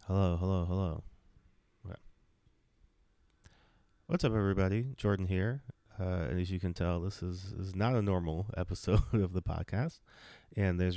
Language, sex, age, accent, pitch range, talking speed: English, male, 30-49, American, 85-100 Hz, 140 wpm